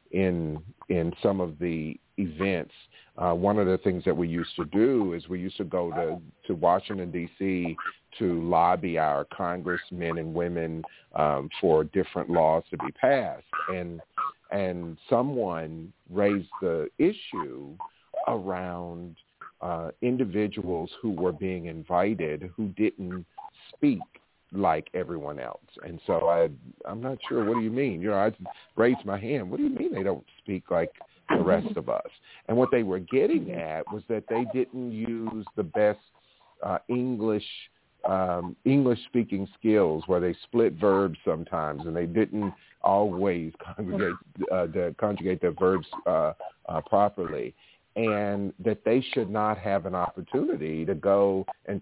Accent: American